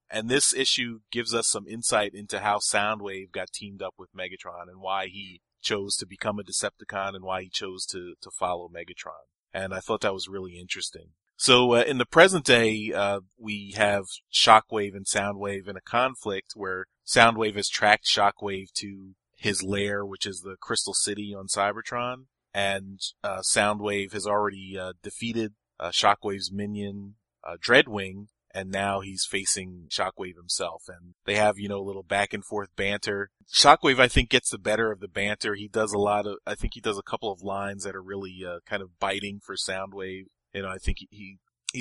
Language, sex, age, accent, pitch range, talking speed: English, male, 30-49, American, 95-110 Hz, 190 wpm